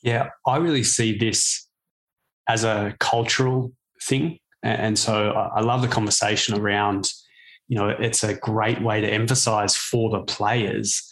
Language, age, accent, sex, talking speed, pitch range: English, 20-39, Australian, male, 145 wpm, 105-120 Hz